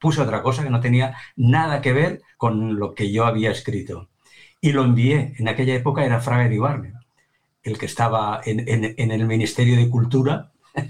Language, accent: Spanish, Spanish